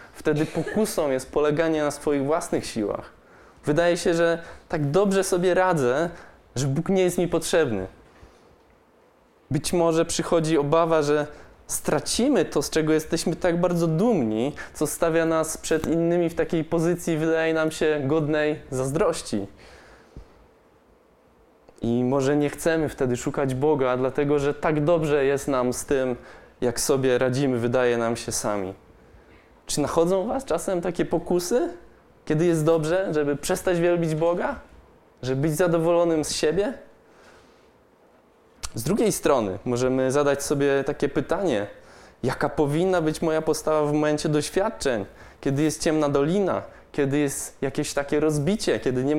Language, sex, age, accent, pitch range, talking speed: Polish, male, 20-39, native, 140-170 Hz, 140 wpm